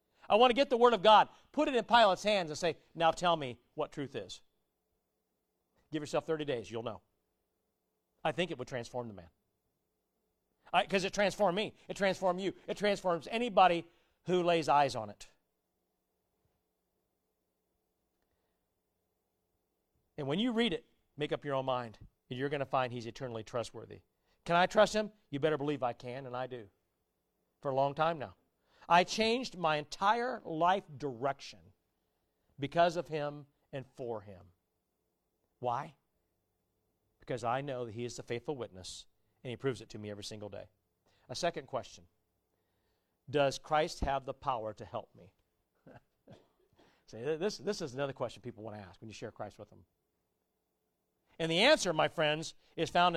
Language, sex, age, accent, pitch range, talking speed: English, male, 40-59, American, 110-170 Hz, 170 wpm